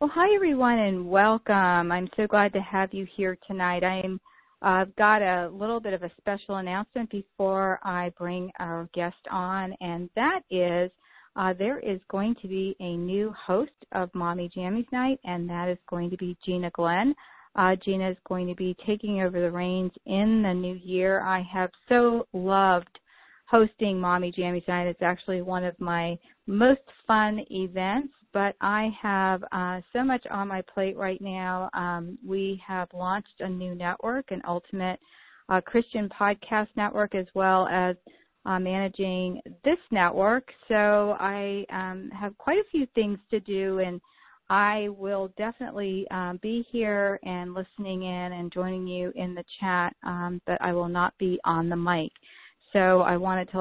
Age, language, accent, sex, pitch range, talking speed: 40-59, English, American, female, 180-205 Hz, 170 wpm